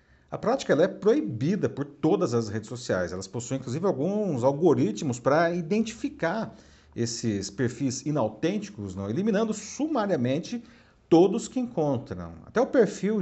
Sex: male